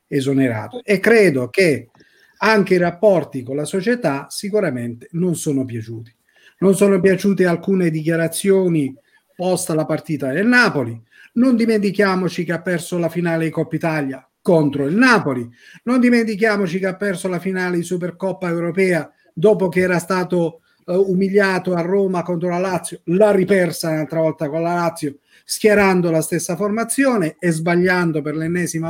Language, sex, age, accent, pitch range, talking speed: Italian, male, 40-59, native, 155-205 Hz, 150 wpm